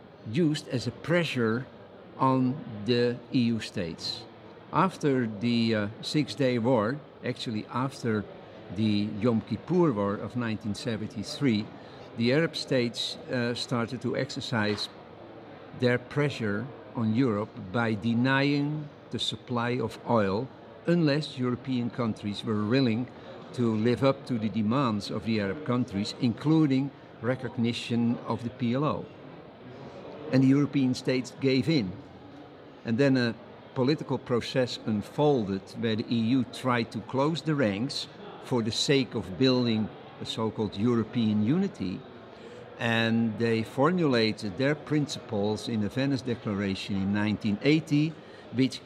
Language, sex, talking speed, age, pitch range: English, male, 120 wpm, 50-69, 110-135 Hz